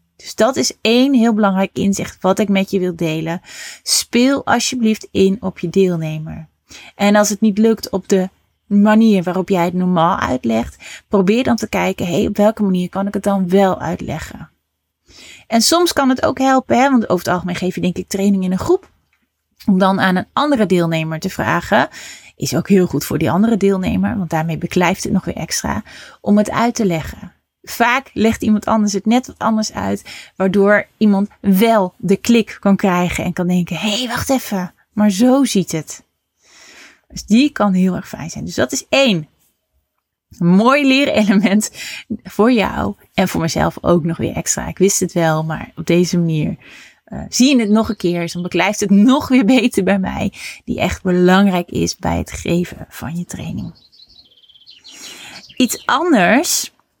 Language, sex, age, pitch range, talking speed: Dutch, female, 30-49, 180-220 Hz, 185 wpm